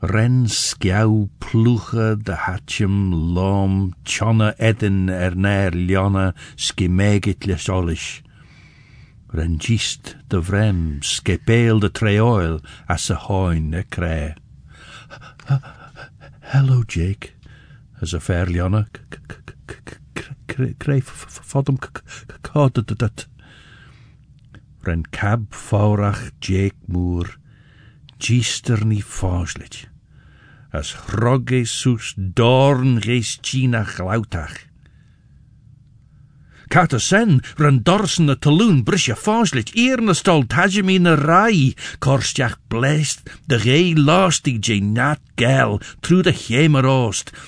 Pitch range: 100-145 Hz